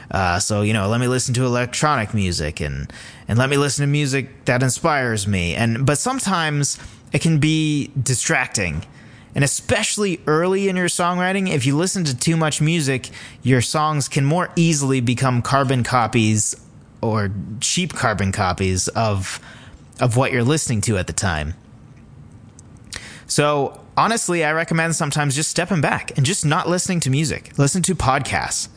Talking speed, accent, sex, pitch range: 165 wpm, American, male, 115-155 Hz